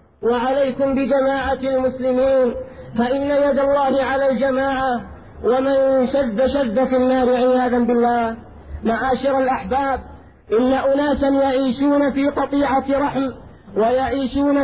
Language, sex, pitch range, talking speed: Arabic, male, 260-280 Hz, 105 wpm